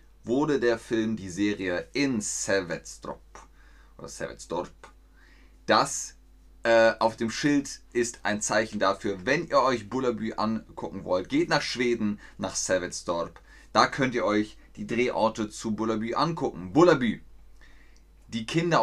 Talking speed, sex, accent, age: 125 wpm, male, German, 30-49